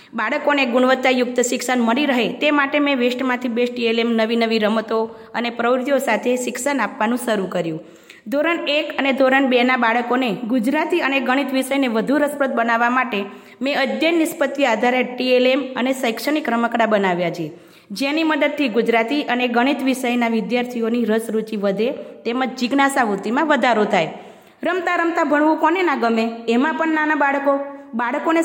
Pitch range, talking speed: 230-280 Hz, 150 wpm